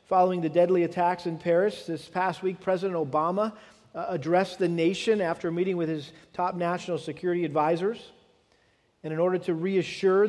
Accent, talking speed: American, 170 wpm